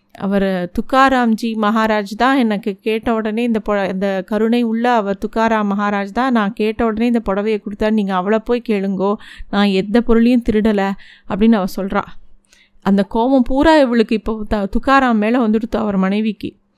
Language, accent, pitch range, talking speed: Tamil, native, 210-250 Hz, 140 wpm